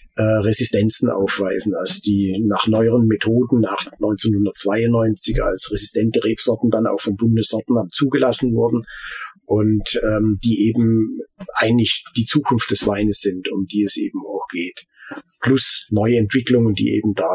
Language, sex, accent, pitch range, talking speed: German, male, German, 105-130 Hz, 140 wpm